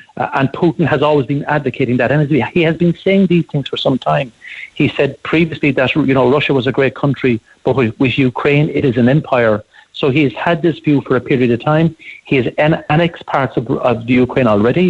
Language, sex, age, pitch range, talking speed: English, male, 60-79, 125-155 Hz, 230 wpm